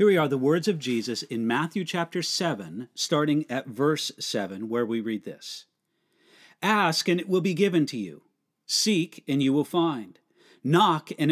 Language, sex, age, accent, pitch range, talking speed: English, male, 50-69, American, 145-200 Hz, 180 wpm